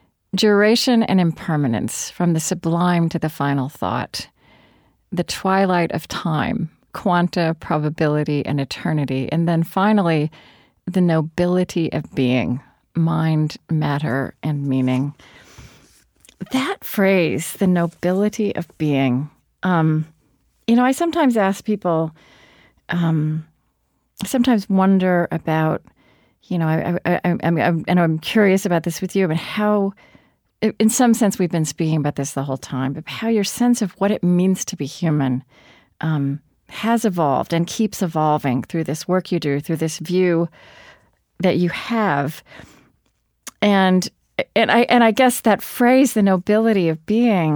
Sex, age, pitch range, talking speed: female, 40-59, 155-200 Hz, 145 wpm